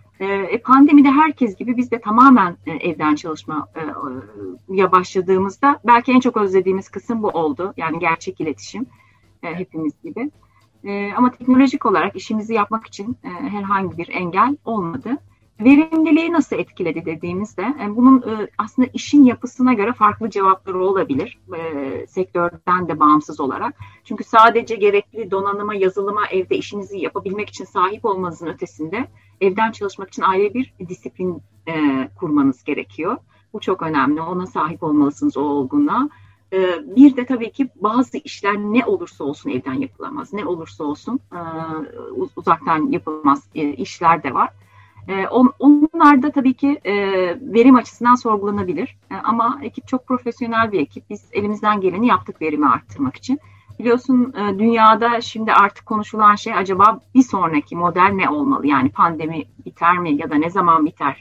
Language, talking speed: Turkish, 140 wpm